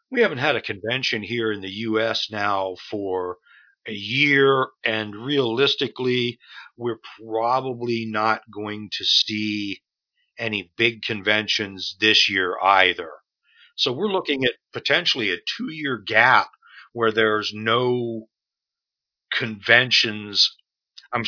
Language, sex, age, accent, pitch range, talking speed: English, male, 50-69, American, 105-130 Hz, 115 wpm